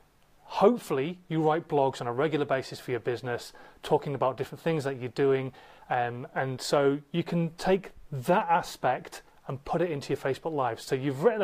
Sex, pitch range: male, 130-165 Hz